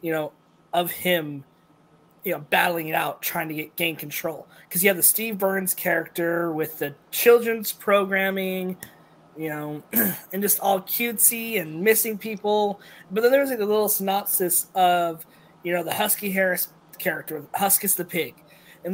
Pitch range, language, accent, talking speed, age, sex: 170-200 Hz, English, American, 160 wpm, 20-39, male